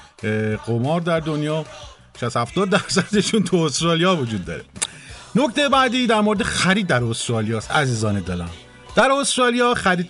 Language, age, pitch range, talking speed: Persian, 50-69, 140-195 Hz, 130 wpm